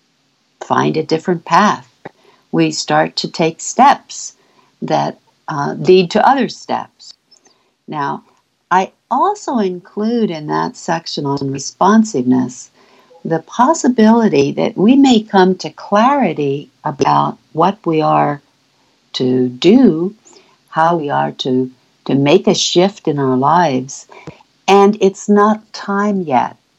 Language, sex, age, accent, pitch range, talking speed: English, female, 60-79, American, 140-190 Hz, 120 wpm